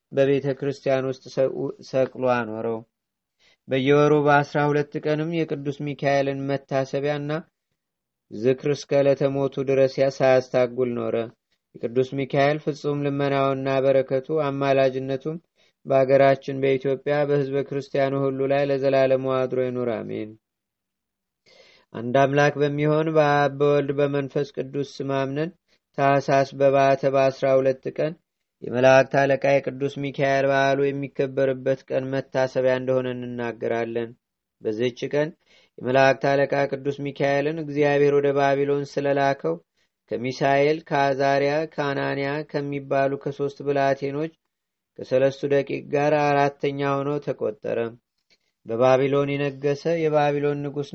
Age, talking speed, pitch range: 30-49, 95 wpm, 135-145 Hz